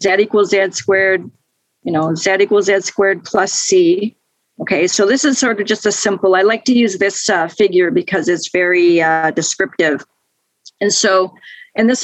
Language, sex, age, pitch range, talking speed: English, female, 40-59, 190-245 Hz, 185 wpm